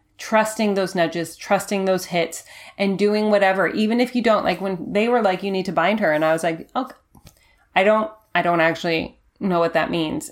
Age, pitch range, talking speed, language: 30-49, 175-220 Hz, 215 wpm, English